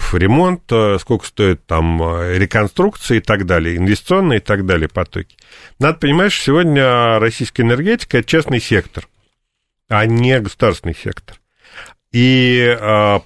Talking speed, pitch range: 130 wpm, 100-130 Hz